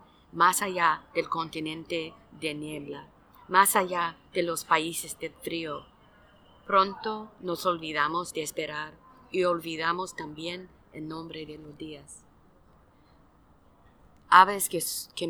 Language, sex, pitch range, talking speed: English, female, 155-185 Hz, 115 wpm